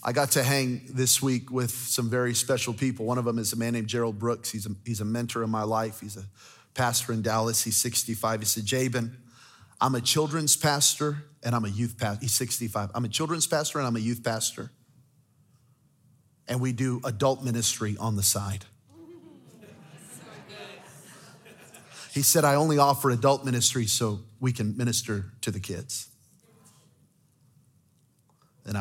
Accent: American